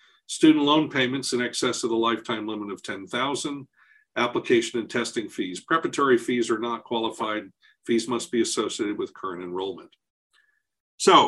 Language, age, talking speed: English, 50-69, 150 wpm